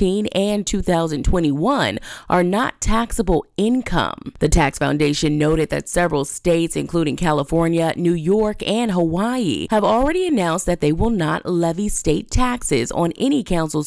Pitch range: 155-210 Hz